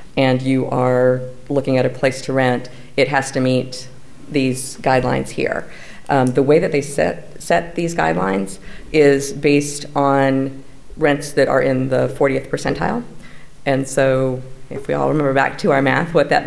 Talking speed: 170 wpm